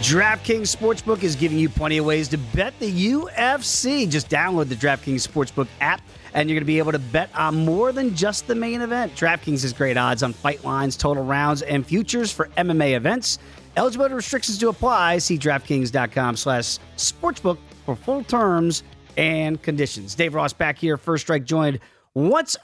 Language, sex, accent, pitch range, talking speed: English, male, American, 145-210 Hz, 180 wpm